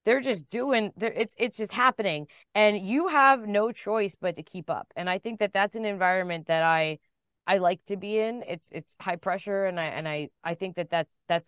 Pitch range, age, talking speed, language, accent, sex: 165-215 Hz, 20-39, 230 wpm, English, American, female